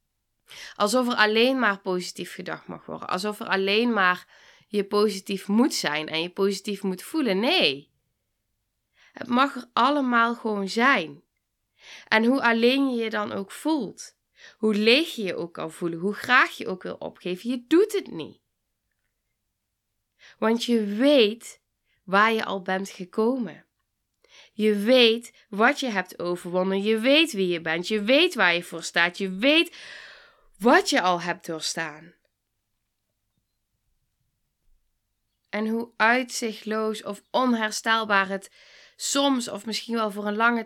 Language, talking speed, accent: Dutch, 145 wpm, Dutch